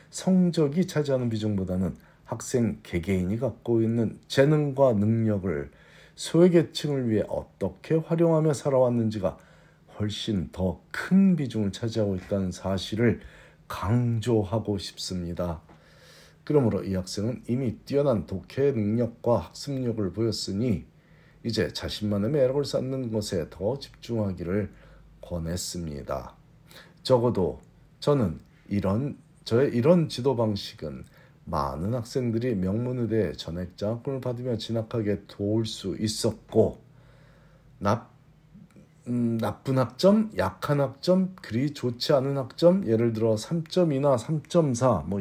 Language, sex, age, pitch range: Korean, male, 40-59, 105-140 Hz